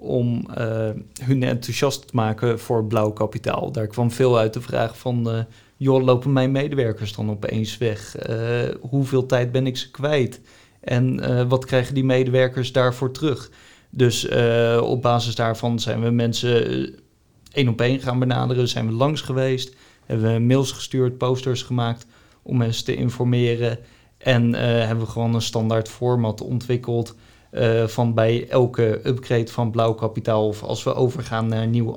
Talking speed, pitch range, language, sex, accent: 170 wpm, 115-125 Hz, Dutch, male, Dutch